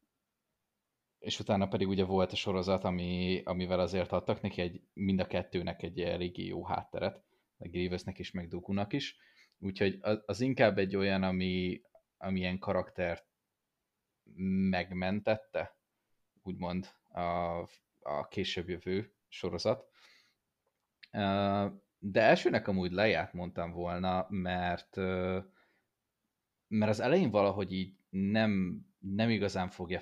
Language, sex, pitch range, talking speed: Hungarian, male, 90-100 Hz, 120 wpm